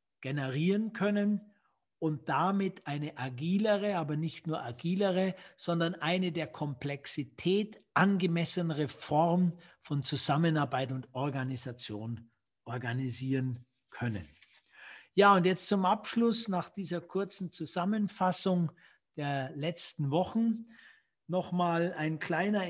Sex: male